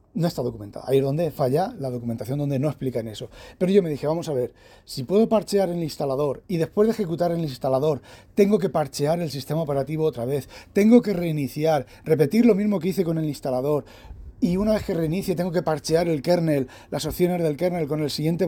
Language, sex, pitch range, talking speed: Spanish, male, 130-175 Hz, 225 wpm